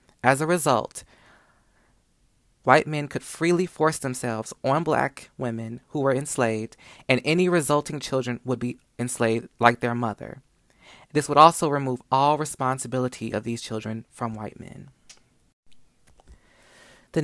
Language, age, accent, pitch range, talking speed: English, 20-39, American, 120-155 Hz, 130 wpm